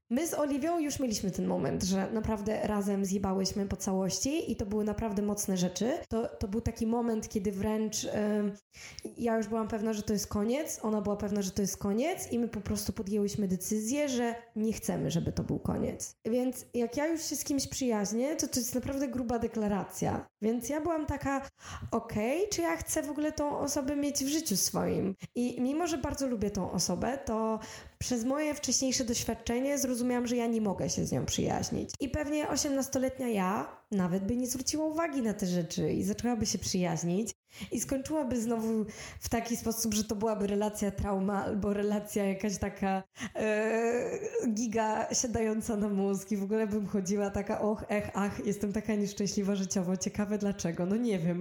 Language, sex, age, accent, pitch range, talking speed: Polish, female, 20-39, native, 205-255 Hz, 185 wpm